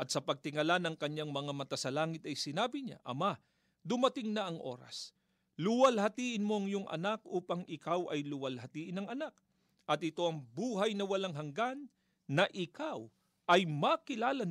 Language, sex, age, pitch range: Filipino, male, 40-59, 155-205 Hz